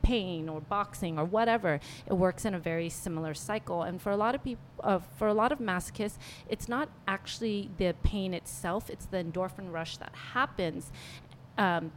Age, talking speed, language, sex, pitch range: 30-49, 180 wpm, English, female, 155-195 Hz